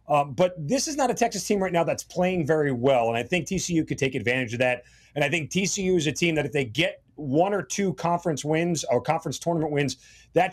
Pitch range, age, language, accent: 135-175 Hz, 30-49, English, American